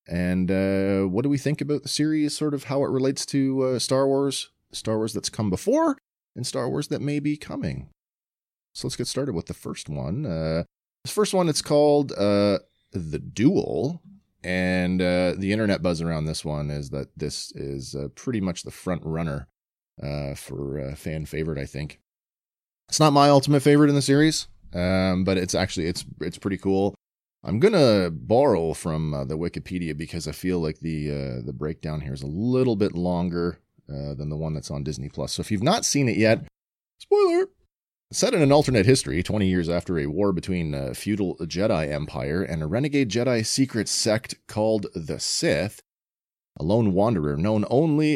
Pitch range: 80-135 Hz